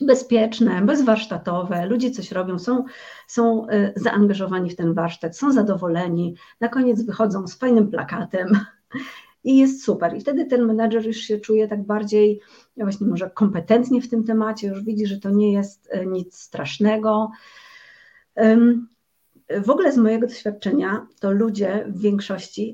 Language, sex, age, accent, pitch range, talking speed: Polish, female, 40-59, native, 195-230 Hz, 145 wpm